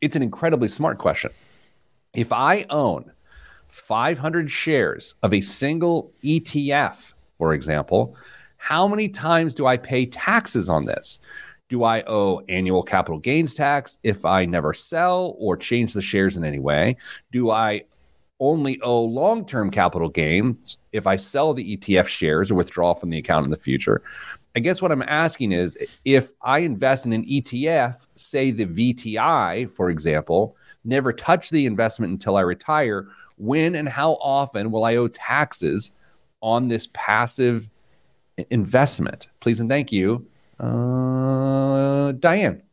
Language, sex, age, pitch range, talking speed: English, male, 40-59, 95-140 Hz, 150 wpm